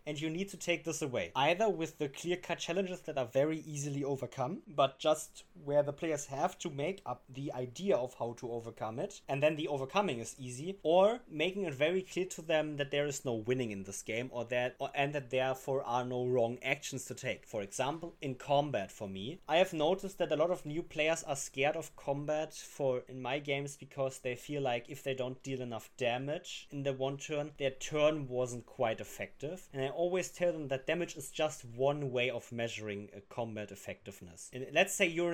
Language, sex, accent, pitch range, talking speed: English, male, German, 130-165 Hz, 215 wpm